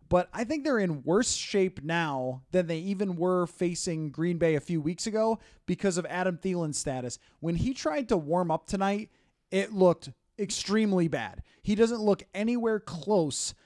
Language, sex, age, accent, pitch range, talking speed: English, male, 20-39, American, 160-205 Hz, 175 wpm